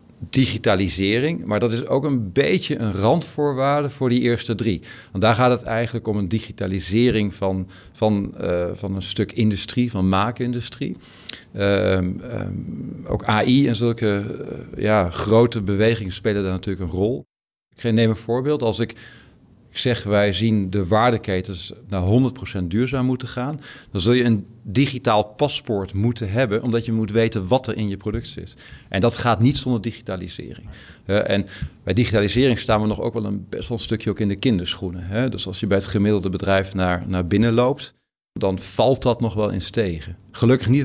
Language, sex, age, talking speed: Dutch, male, 50-69, 180 wpm